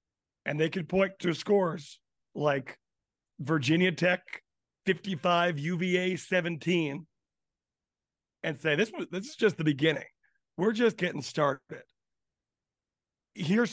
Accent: American